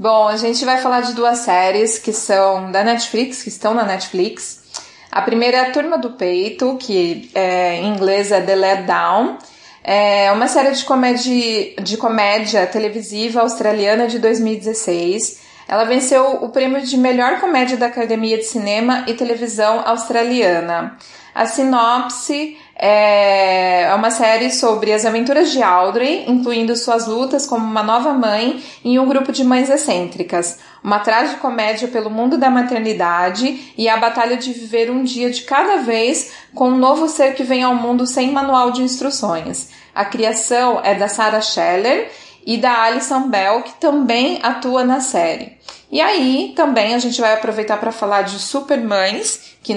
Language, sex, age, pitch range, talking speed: Portuguese, female, 20-39, 210-255 Hz, 160 wpm